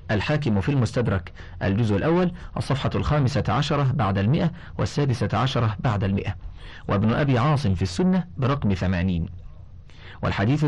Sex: male